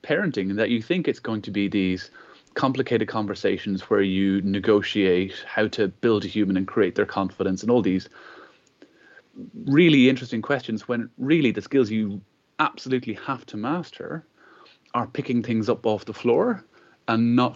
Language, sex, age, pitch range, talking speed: English, male, 30-49, 100-125 Hz, 165 wpm